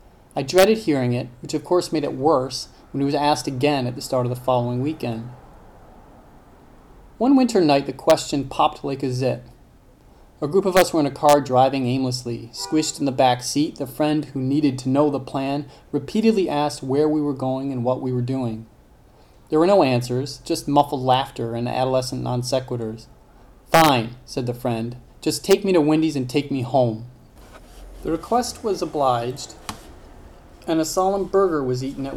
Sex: male